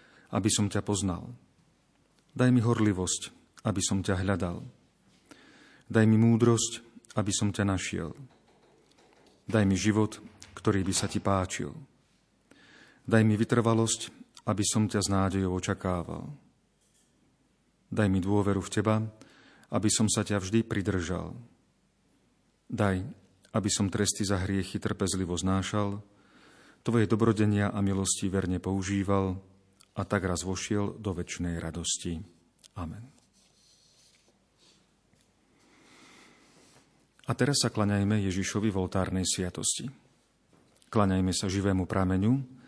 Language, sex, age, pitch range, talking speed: Slovak, male, 40-59, 95-110 Hz, 110 wpm